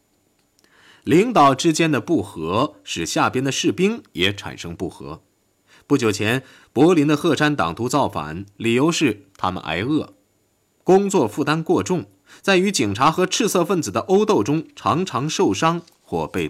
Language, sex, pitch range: Chinese, male, 95-160 Hz